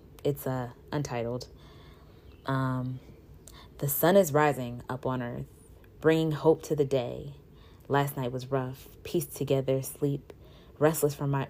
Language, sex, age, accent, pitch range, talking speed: English, female, 20-39, American, 125-145 Hz, 135 wpm